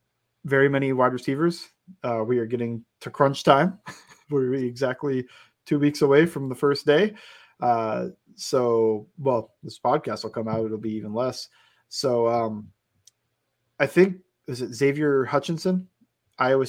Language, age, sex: English, 20-39, male